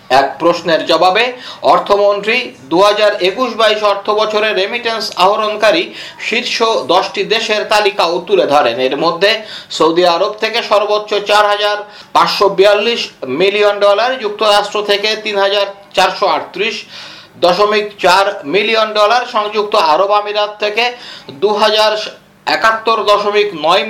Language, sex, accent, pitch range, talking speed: Bengali, male, native, 200-215 Hz, 40 wpm